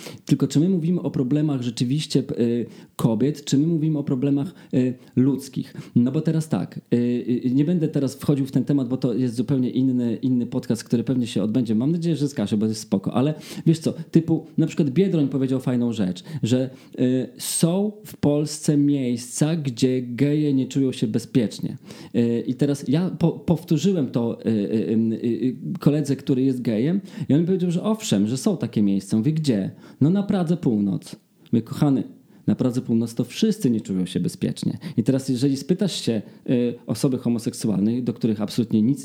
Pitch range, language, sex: 125-160 Hz, Polish, male